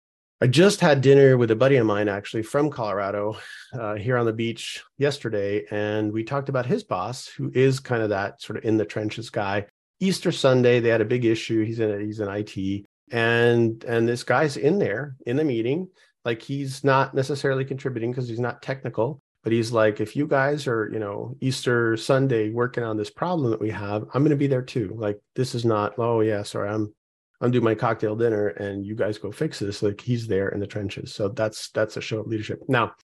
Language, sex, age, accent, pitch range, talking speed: English, male, 40-59, American, 110-135 Hz, 220 wpm